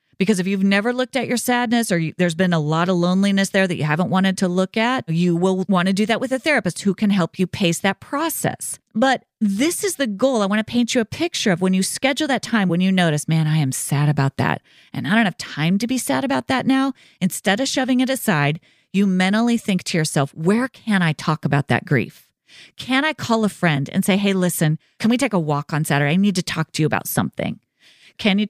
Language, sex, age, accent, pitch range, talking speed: English, female, 30-49, American, 170-245 Hz, 255 wpm